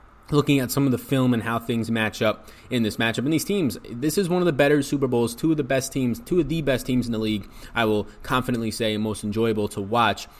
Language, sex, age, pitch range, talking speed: English, male, 20-39, 100-135 Hz, 270 wpm